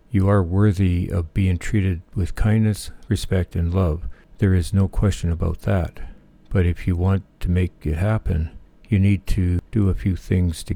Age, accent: 60-79, American